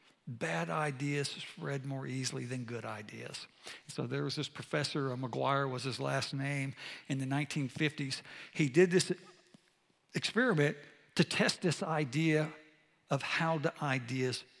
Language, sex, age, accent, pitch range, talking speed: English, male, 60-79, American, 145-185 Hz, 135 wpm